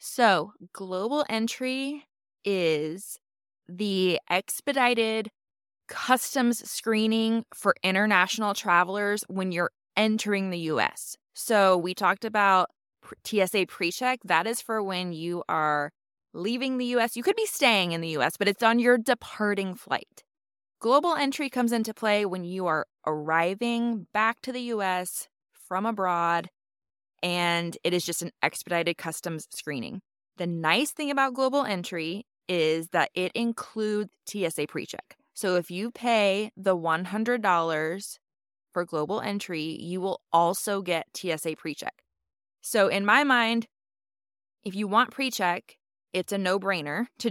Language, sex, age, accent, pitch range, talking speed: English, female, 20-39, American, 170-225 Hz, 135 wpm